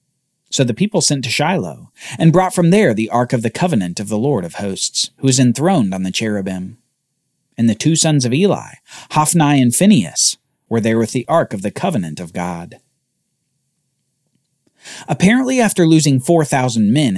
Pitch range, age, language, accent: 115-175 Hz, 40-59, English, American